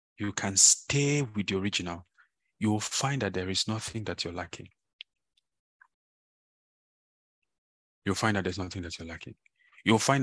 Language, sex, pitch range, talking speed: English, male, 90-110 Hz, 155 wpm